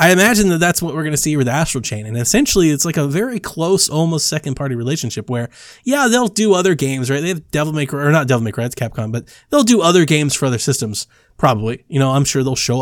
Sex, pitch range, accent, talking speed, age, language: male, 120-155 Hz, American, 250 wpm, 20-39, English